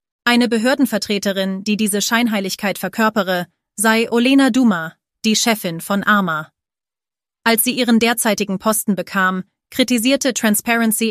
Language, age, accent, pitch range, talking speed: German, 30-49, German, 195-225 Hz, 115 wpm